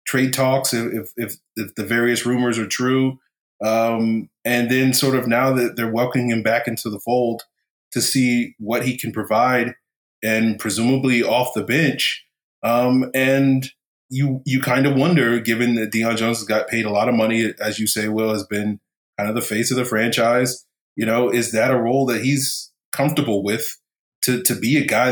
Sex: male